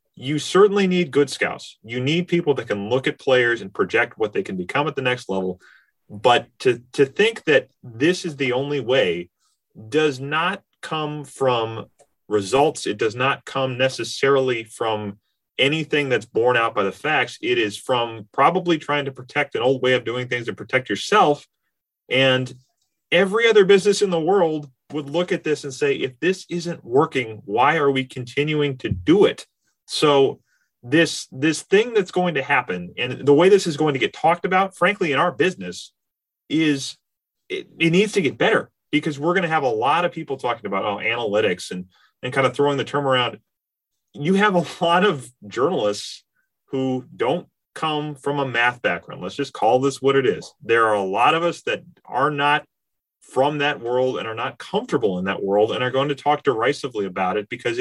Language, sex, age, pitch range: English, male, 30-49, 125-170 Hz